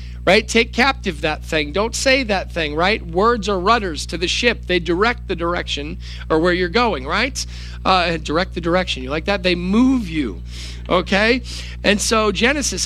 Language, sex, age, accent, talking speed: English, male, 40-59, American, 180 wpm